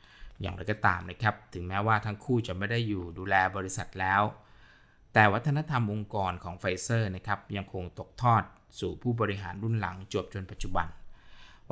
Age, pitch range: 20-39, 95-110 Hz